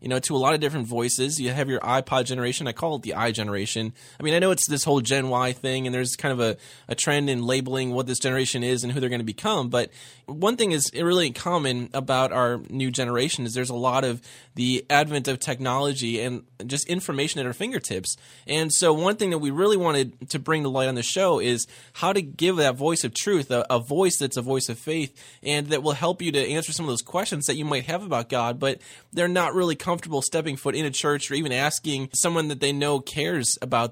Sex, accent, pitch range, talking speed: male, American, 130-165 Hz, 245 wpm